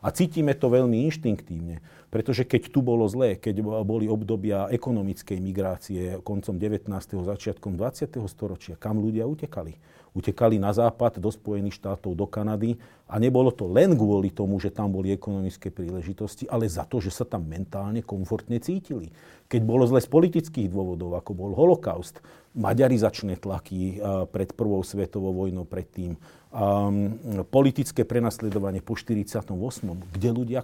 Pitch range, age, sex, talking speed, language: 100-140 Hz, 40-59, male, 145 wpm, Slovak